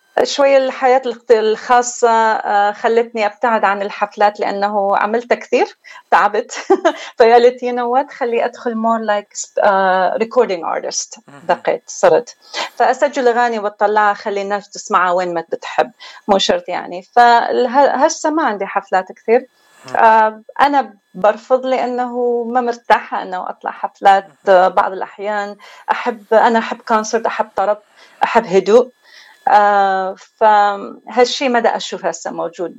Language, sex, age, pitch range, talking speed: Arabic, female, 30-49, 200-250 Hz, 115 wpm